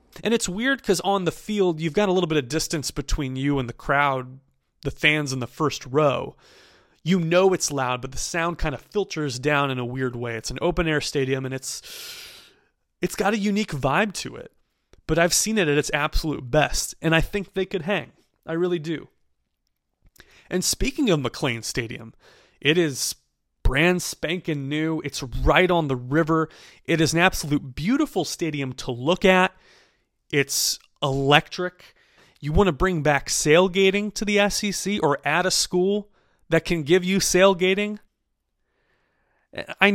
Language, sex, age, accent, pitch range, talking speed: English, male, 30-49, American, 130-180 Hz, 175 wpm